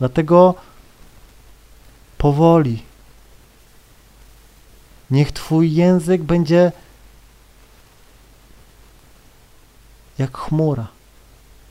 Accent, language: native, Polish